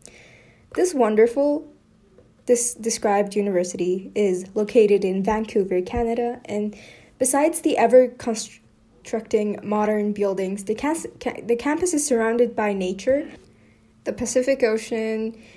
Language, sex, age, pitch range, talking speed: English, female, 10-29, 205-250 Hz, 115 wpm